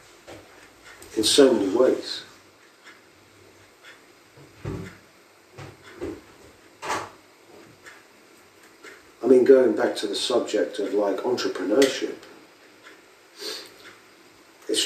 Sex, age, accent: male, 50-69, British